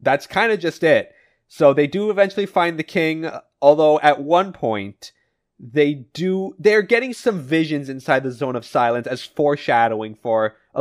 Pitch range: 120-175 Hz